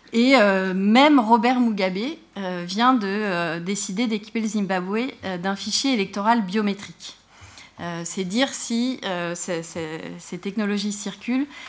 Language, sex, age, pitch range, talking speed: French, female, 30-49, 180-220 Hz, 145 wpm